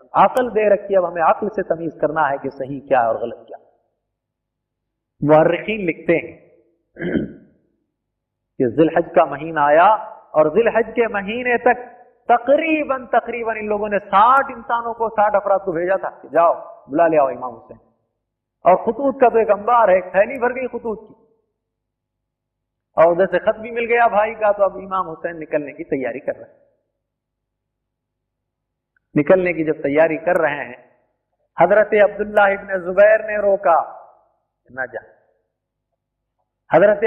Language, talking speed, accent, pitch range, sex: Hindi, 140 wpm, native, 165-230 Hz, male